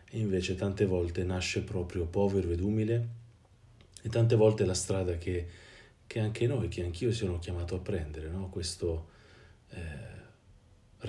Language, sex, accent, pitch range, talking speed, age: Italian, male, native, 90-105 Hz, 145 wpm, 40-59